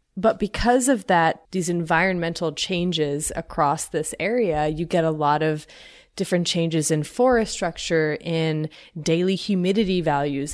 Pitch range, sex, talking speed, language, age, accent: 155-195 Hz, female, 135 wpm, English, 20-39, American